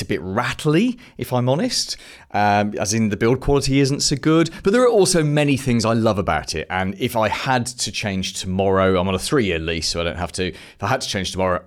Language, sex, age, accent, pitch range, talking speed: English, male, 30-49, British, 95-135 Hz, 245 wpm